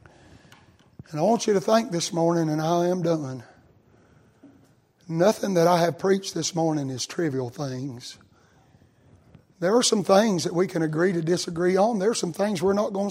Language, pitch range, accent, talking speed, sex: English, 155-245 Hz, American, 185 wpm, male